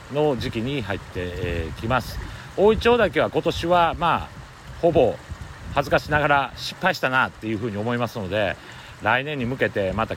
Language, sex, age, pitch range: Japanese, male, 40-59, 100-145 Hz